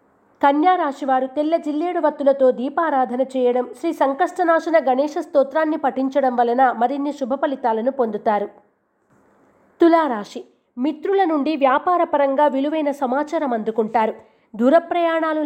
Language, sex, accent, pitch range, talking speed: Telugu, female, native, 245-310 Hz, 95 wpm